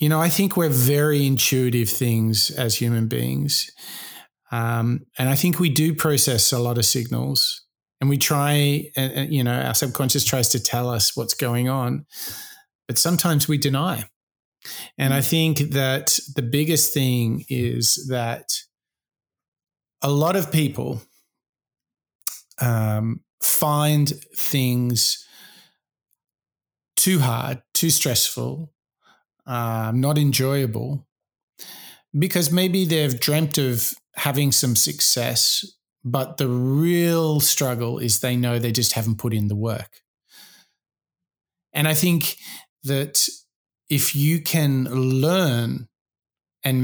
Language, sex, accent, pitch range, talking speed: English, male, Australian, 120-155 Hz, 125 wpm